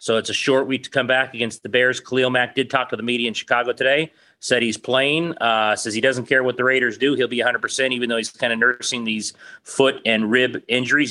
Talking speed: 260 wpm